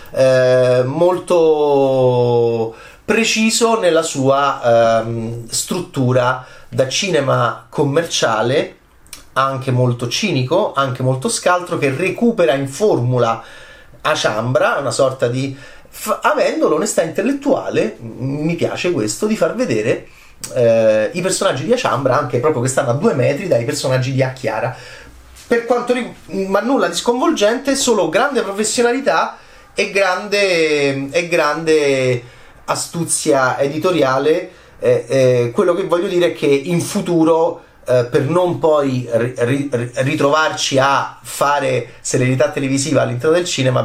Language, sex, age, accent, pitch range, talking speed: Italian, male, 30-49, native, 130-180 Hz, 125 wpm